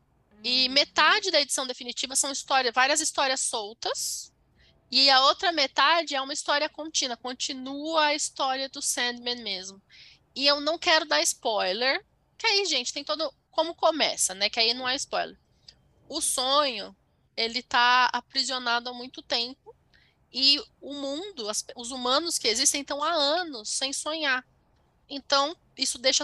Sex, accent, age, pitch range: female, Brazilian, 10-29, 240-300 Hz